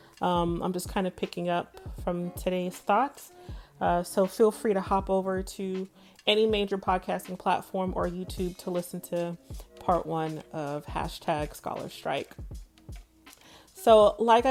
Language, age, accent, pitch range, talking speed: English, 30-49, American, 170-200 Hz, 145 wpm